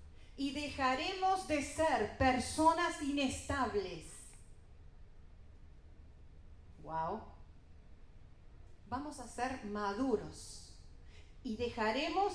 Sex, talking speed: female, 65 wpm